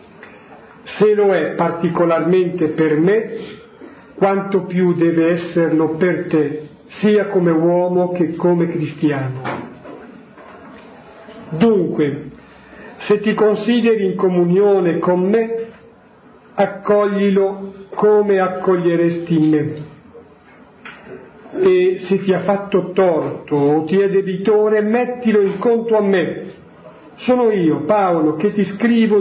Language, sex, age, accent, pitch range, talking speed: Italian, male, 50-69, native, 165-210 Hz, 105 wpm